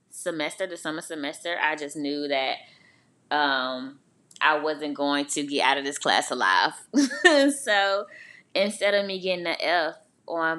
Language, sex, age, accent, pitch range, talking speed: English, female, 20-39, American, 140-190 Hz, 155 wpm